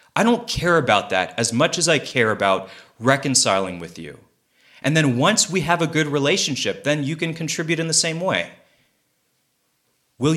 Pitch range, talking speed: 110-155 Hz, 180 wpm